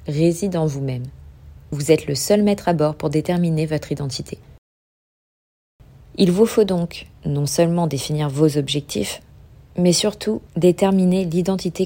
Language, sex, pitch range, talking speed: French, female, 140-180 Hz, 135 wpm